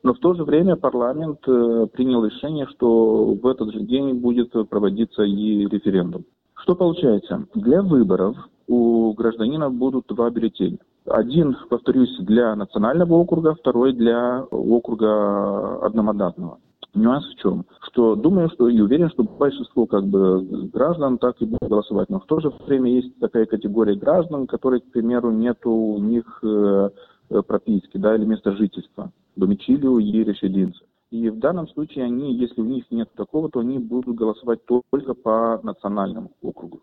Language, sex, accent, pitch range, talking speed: Russian, male, native, 105-130 Hz, 150 wpm